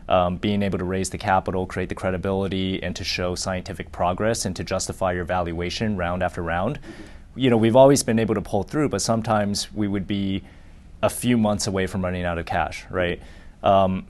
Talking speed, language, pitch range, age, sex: 205 wpm, English, 95-110 Hz, 30-49, male